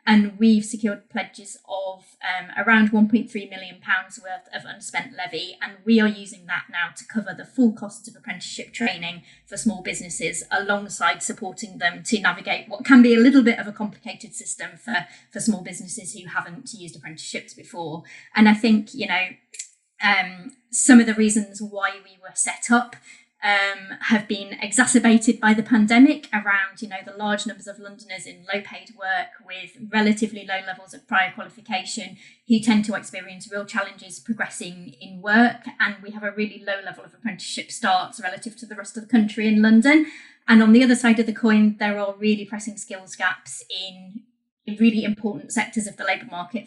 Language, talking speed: English, 185 wpm